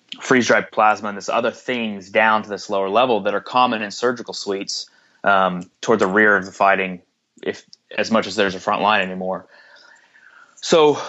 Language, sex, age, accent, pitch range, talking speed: English, male, 20-39, American, 100-115 Hz, 185 wpm